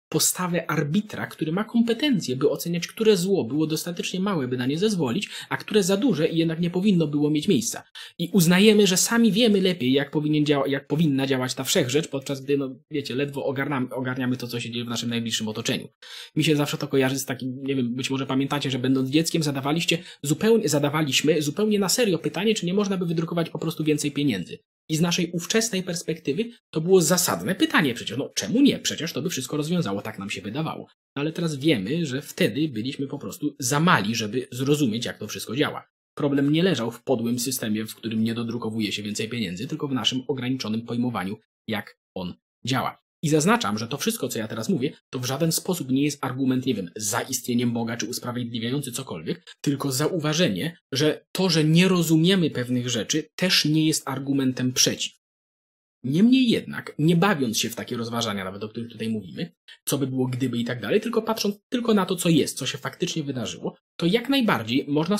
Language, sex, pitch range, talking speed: Polish, male, 130-175 Hz, 195 wpm